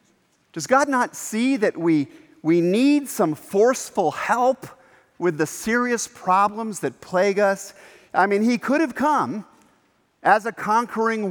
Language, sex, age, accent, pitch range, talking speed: English, male, 50-69, American, 145-225 Hz, 145 wpm